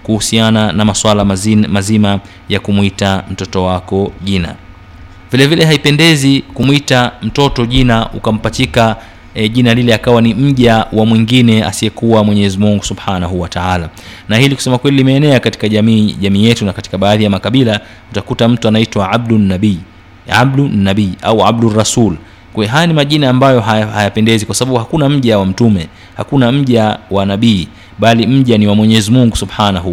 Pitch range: 100-115 Hz